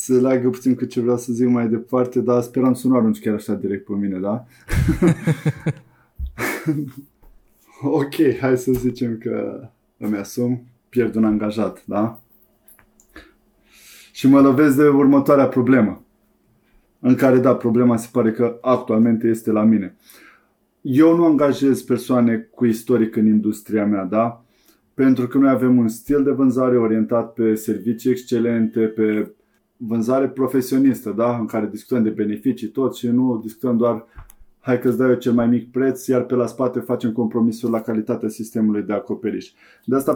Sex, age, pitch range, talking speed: male, 20-39, 110-130 Hz, 160 wpm